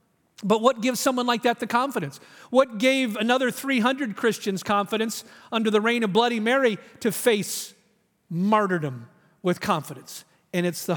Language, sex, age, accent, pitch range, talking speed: English, male, 40-59, American, 200-260 Hz, 155 wpm